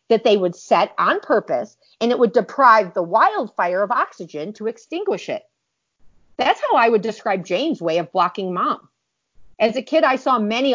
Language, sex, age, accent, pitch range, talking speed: English, female, 50-69, American, 180-245 Hz, 185 wpm